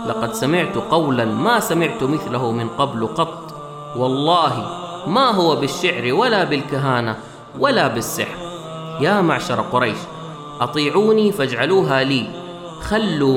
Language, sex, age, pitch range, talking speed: Arabic, male, 30-49, 125-185 Hz, 110 wpm